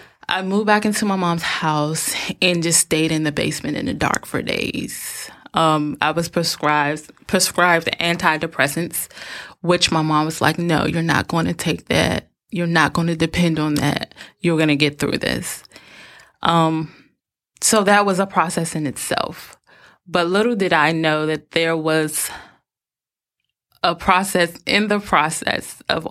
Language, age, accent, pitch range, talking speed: English, 20-39, American, 160-175 Hz, 165 wpm